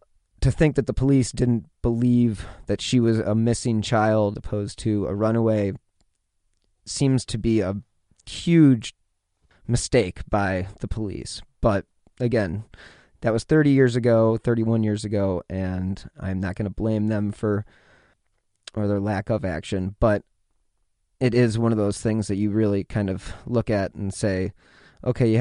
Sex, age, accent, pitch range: male, 30-49, American, 100-115 Hz